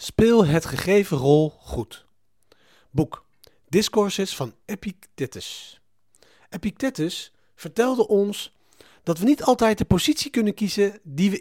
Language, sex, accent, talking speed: Dutch, male, Dutch, 115 wpm